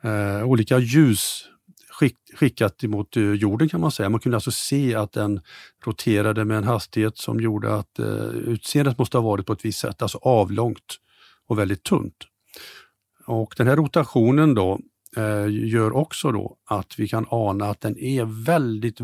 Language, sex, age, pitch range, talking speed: Swedish, male, 50-69, 105-130 Hz, 170 wpm